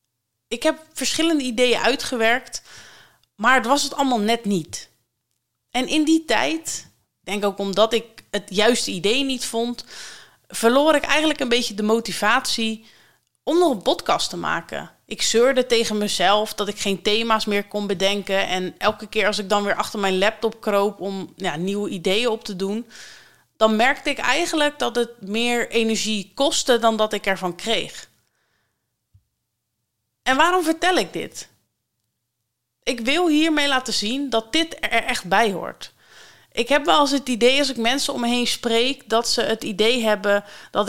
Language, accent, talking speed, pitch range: Dutch, Dutch, 170 wpm, 200-250 Hz